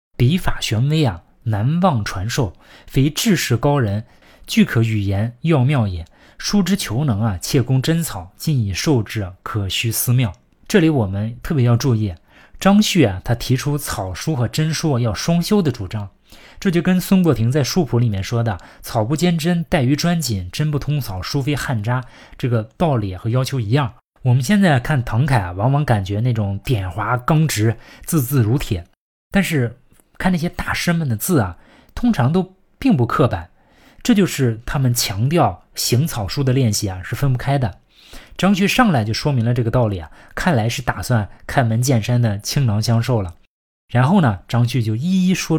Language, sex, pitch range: Chinese, male, 110-155 Hz